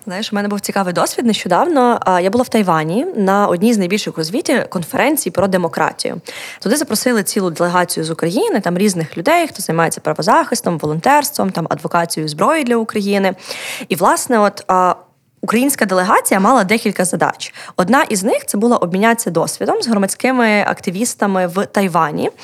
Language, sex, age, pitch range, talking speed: Ukrainian, female, 20-39, 180-230 Hz, 155 wpm